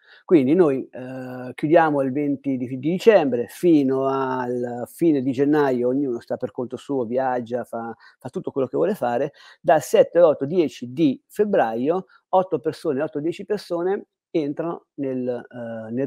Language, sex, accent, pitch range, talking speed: Italian, male, native, 125-165 Hz, 150 wpm